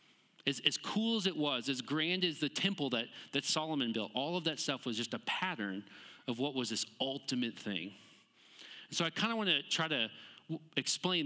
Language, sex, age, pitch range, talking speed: English, male, 30-49, 120-165 Hz, 205 wpm